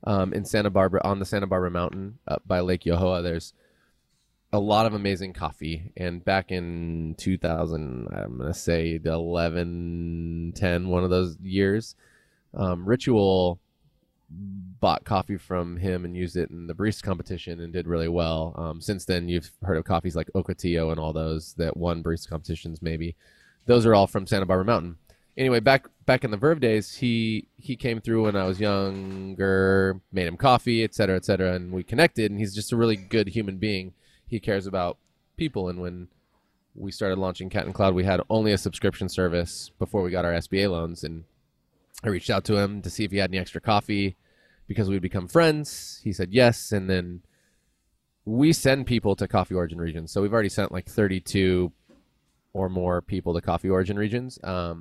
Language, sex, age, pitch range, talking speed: English, male, 20-39, 85-105 Hz, 190 wpm